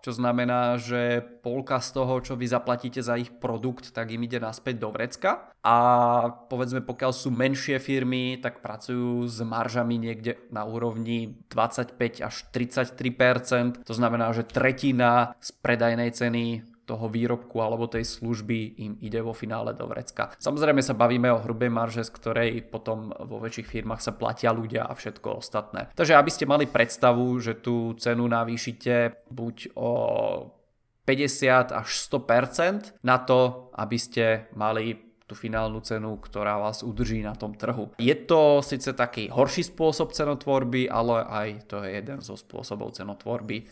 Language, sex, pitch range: Czech, male, 115-130 Hz